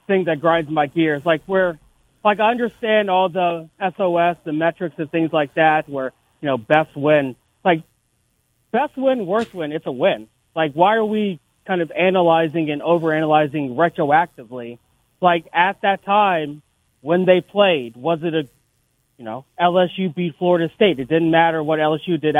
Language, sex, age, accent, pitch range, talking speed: English, male, 30-49, American, 150-190 Hz, 185 wpm